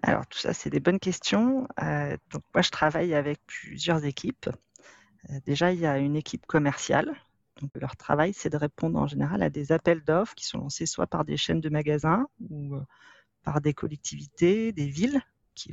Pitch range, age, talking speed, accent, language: 140-170 Hz, 40-59, 200 wpm, French, French